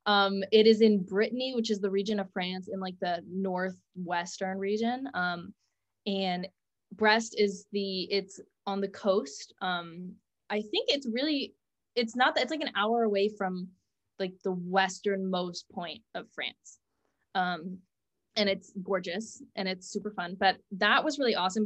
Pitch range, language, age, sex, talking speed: 185-215 Hz, English, 20-39, female, 155 wpm